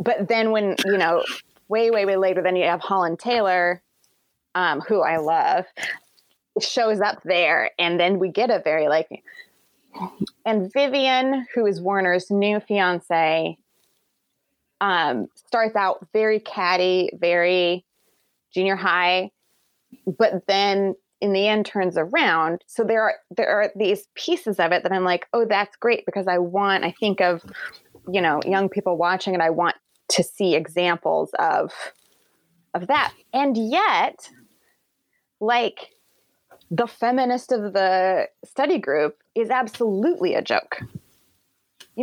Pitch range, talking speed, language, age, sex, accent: 180-230 Hz, 140 wpm, English, 20-39, female, American